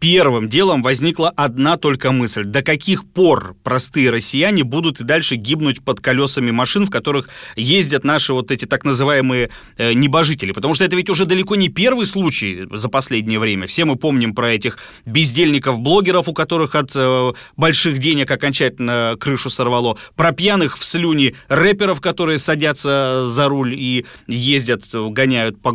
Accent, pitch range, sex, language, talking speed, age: native, 120-160 Hz, male, Russian, 155 wpm, 30-49